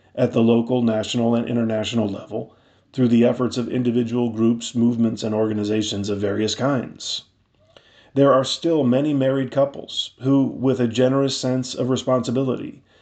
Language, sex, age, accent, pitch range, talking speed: English, male, 40-59, American, 120-135 Hz, 150 wpm